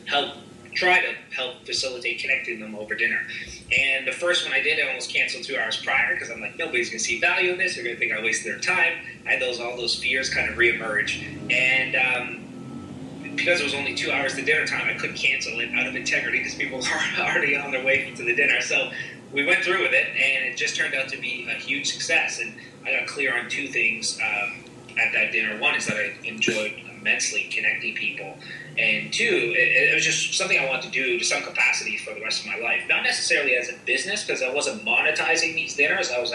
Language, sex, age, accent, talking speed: English, male, 30-49, American, 235 wpm